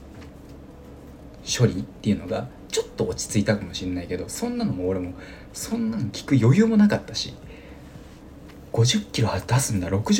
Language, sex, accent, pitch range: Japanese, male, native, 90-125 Hz